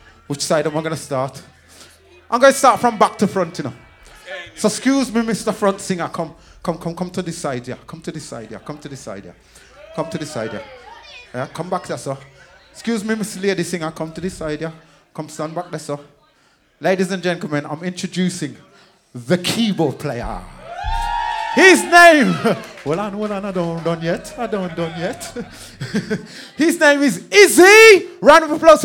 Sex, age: male, 30-49